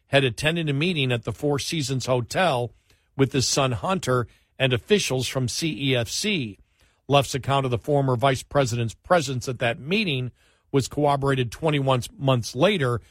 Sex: male